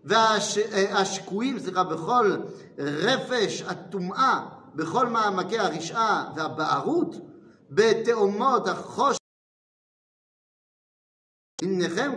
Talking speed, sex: 65 wpm, male